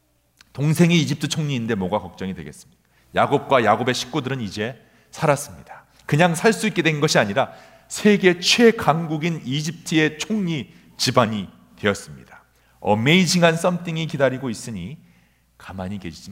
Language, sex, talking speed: English, male, 105 wpm